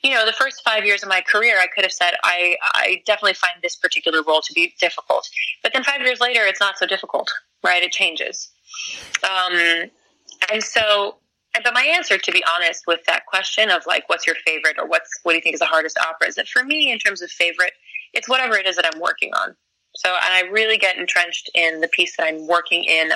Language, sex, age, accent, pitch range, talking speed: English, female, 20-39, American, 170-245 Hz, 235 wpm